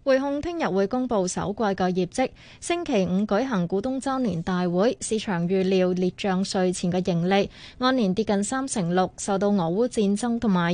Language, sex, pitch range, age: Chinese, female, 190-240 Hz, 20-39